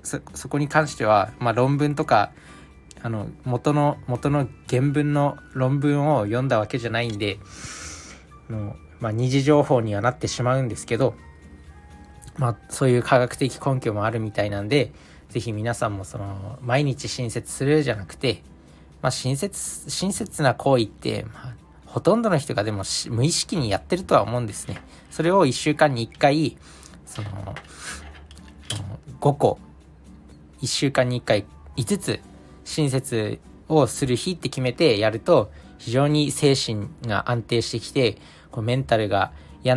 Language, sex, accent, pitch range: Japanese, male, native, 100-135 Hz